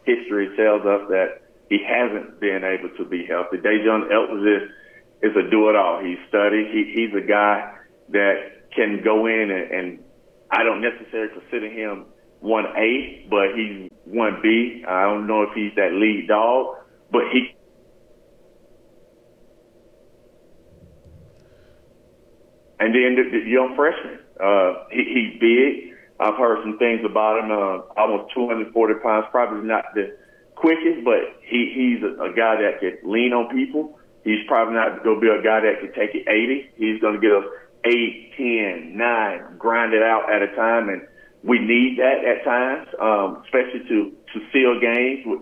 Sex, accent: male, American